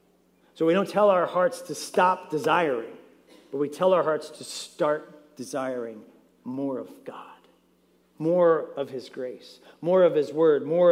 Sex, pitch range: male, 145-175 Hz